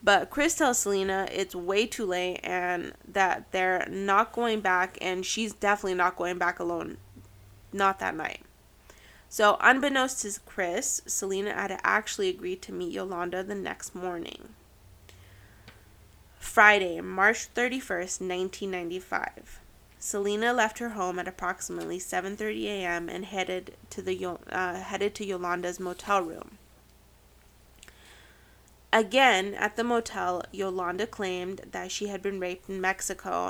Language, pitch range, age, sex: English, 180-210 Hz, 20-39, female